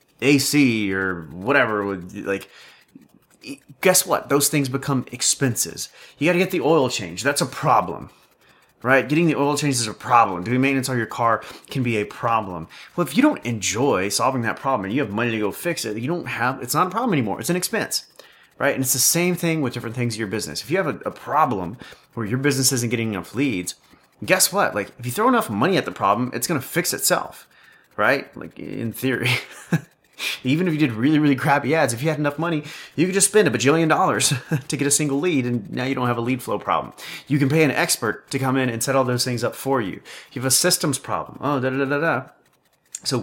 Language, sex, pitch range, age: English, male, 110-150 Hz, 30-49